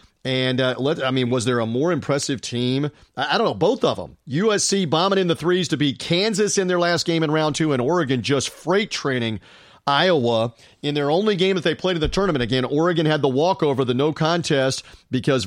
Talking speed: 225 wpm